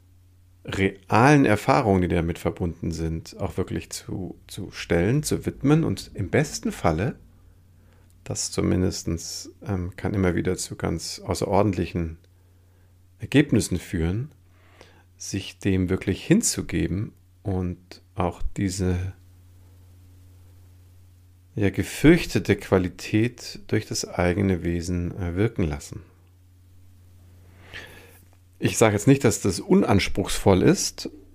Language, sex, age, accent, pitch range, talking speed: German, male, 50-69, German, 90-100 Hz, 100 wpm